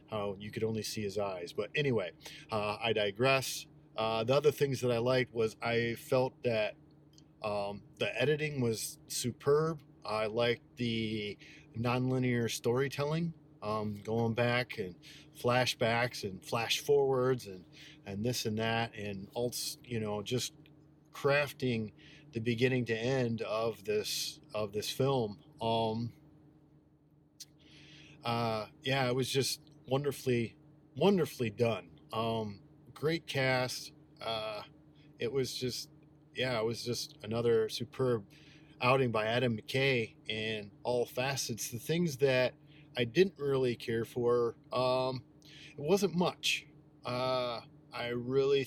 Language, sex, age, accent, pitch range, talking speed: English, male, 40-59, American, 115-150 Hz, 130 wpm